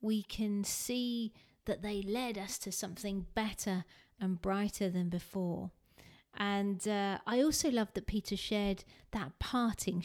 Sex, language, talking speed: female, English, 145 wpm